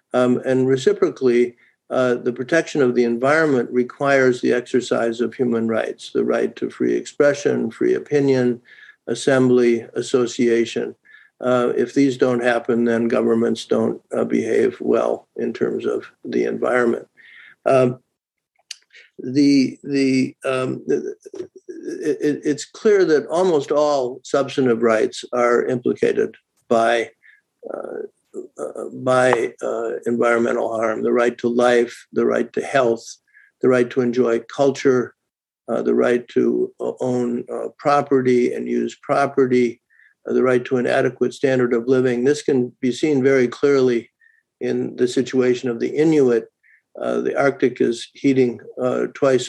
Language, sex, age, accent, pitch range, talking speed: English, male, 50-69, American, 120-145 Hz, 135 wpm